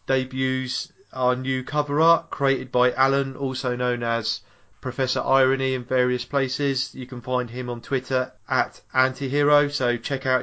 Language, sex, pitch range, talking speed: English, male, 120-135 Hz, 155 wpm